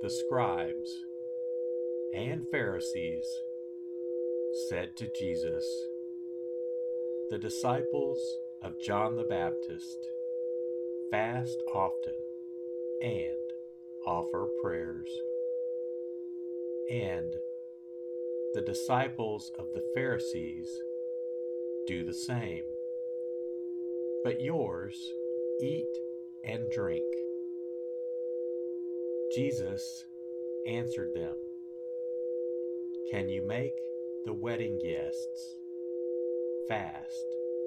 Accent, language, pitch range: American, English, 115-165 Hz